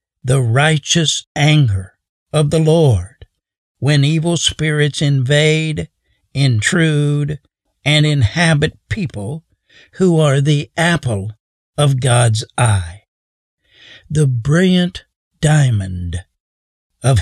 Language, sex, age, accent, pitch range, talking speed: English, male, 60-79, American, 115-160 Hz, 85 wpm